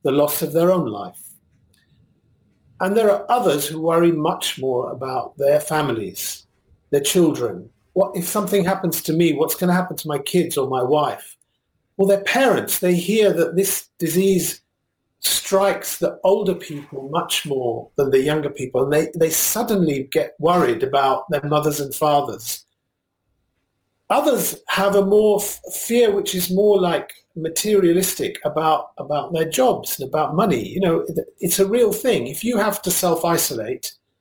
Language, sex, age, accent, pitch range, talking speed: English, male, 50-69, British, 145-200 Hz, 160 wpm